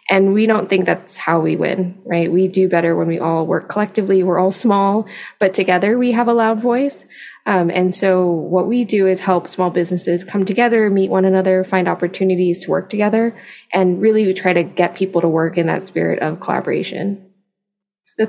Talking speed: 205 wpm